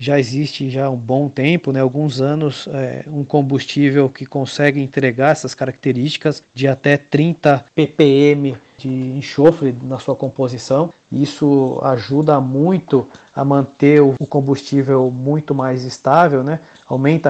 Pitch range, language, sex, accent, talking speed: 135-155 Hz, Portuguese, male, Brazilian, 135 wpm